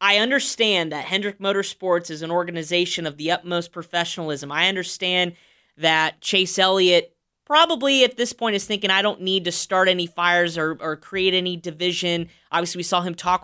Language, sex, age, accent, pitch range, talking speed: English, female, 20-39, American, 165-205 Hz, 180 wpm